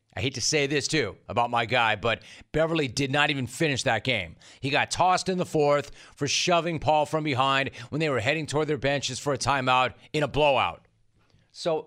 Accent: American